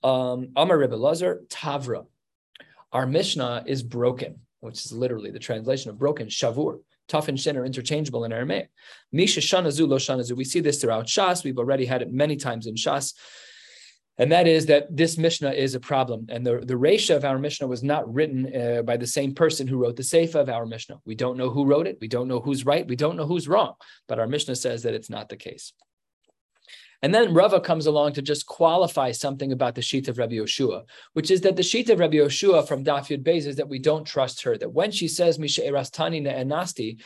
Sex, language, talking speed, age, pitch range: male, English, 205 wpm, 30-49, 125-155 Hz